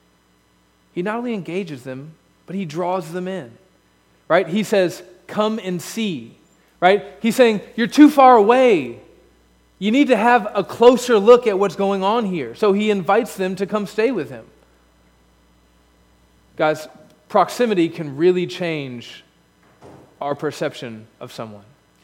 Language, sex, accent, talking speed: English, male, American, 145 wpm